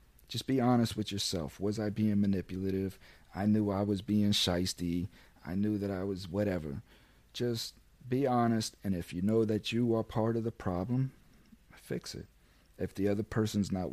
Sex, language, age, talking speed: male, English, 40-59, 180 wpm